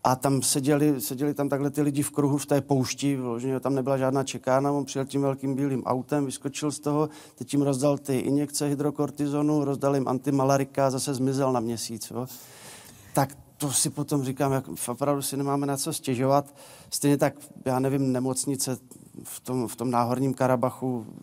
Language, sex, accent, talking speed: Czech, male, native, 180 wpm